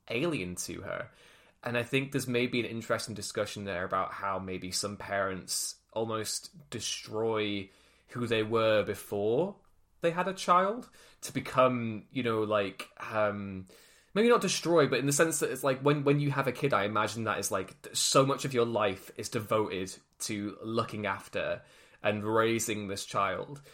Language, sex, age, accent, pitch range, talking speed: English, male, 20-39, British, 110-135 Hz, 170 wpm